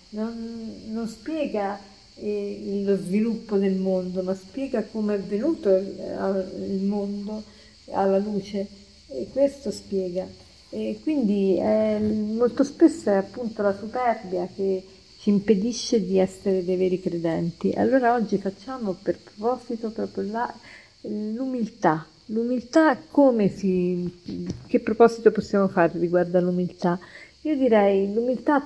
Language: Italian